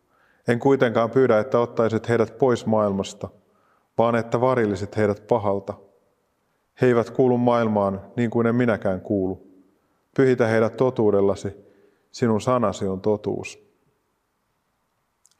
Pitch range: 100-120 Hz